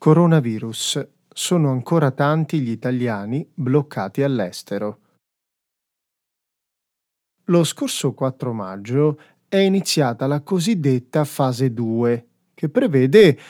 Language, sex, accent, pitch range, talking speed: Italian, male, native, 120-165 Hz, 90 wpm